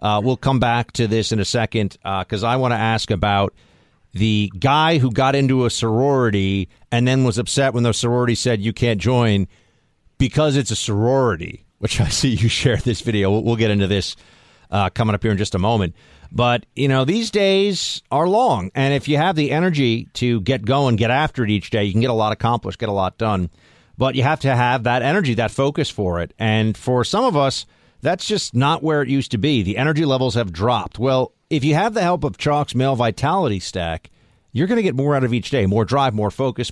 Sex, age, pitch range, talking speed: male, 40-59, 110-140 Hz, 230 wpm